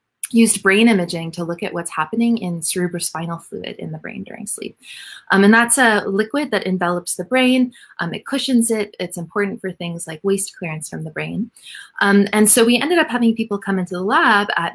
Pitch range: 170-215 Hz